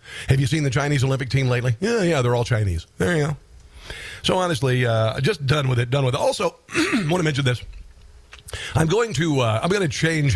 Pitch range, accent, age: 120-175 Hz, American, 50-69